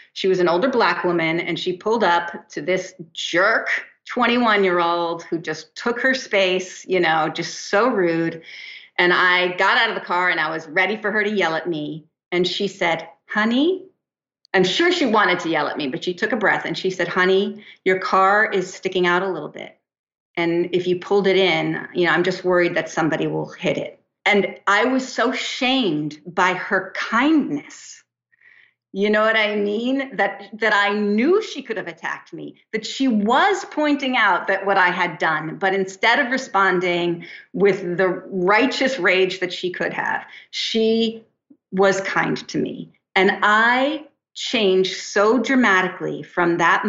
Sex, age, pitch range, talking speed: female, 40-59, 175-225 Hz, 185 wpm